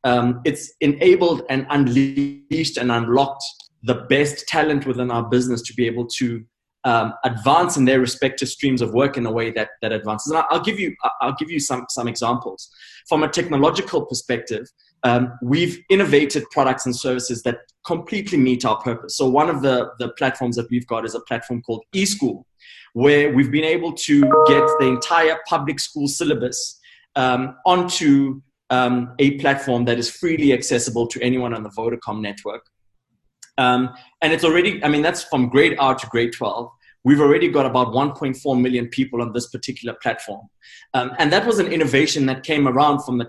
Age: 20-39